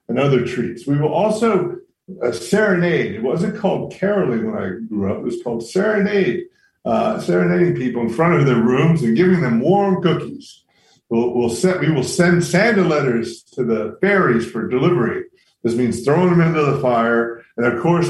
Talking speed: 190 wpm